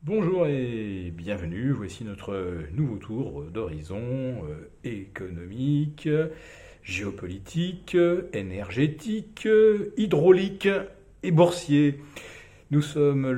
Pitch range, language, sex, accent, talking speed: 115-170 Hz, French, male, French, 70 wpm